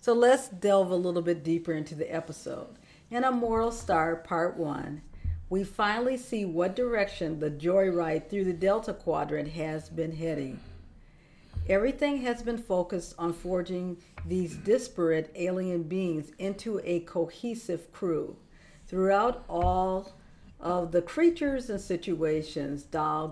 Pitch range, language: 160-195 Hz, English